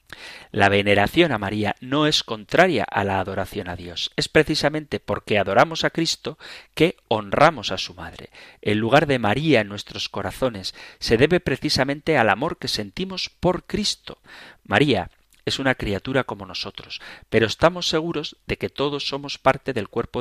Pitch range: 105-150 Hz